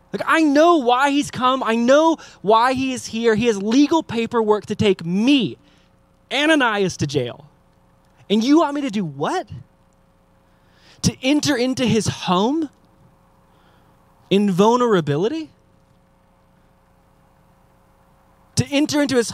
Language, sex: English, male